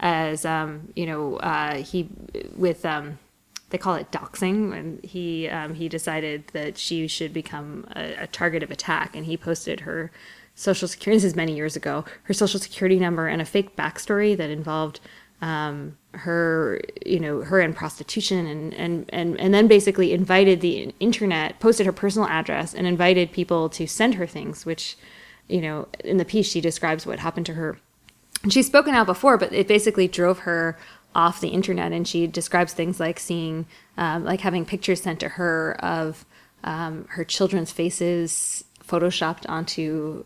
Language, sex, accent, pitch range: English, female, American, 160-190 Hz